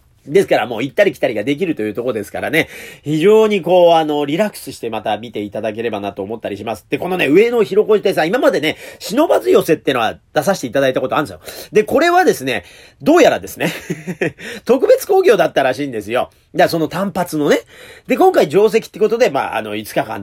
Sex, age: male, 40-59